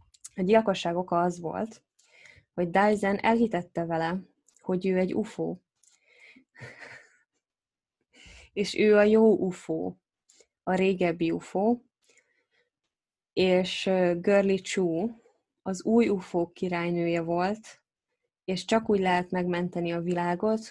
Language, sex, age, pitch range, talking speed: Hungarian, female, 20-39, 175-205 Hz, 105 wpm